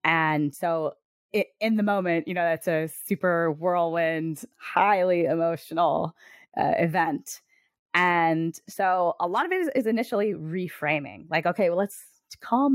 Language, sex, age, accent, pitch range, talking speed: English, female, 20-39, American, 150-185 Hz, 145 wpm